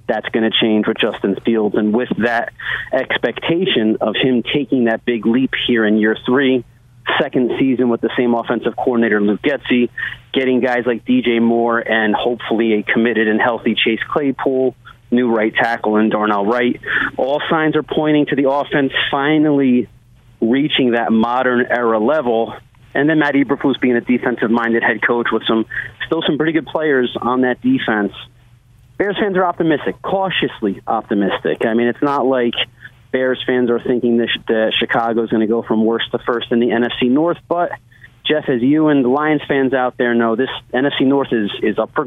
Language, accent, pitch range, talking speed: English, American, 115-135 Hz, 185 wpm